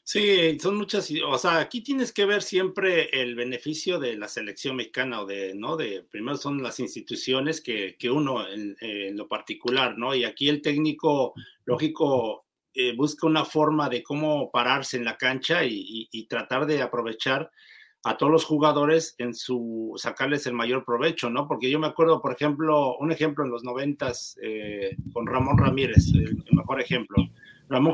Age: 50-69